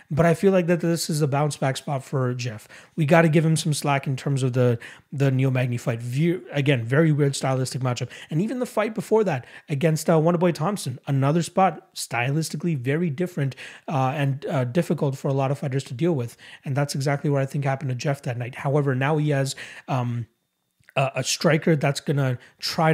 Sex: male